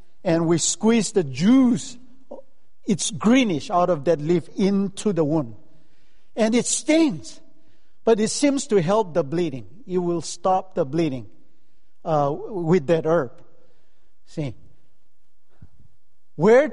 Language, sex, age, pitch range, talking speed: English, male, 50-69, 160-240 Hz, 125 wpm